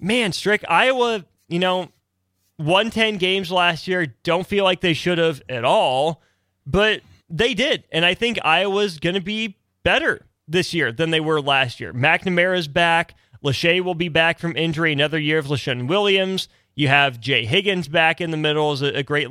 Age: 30-49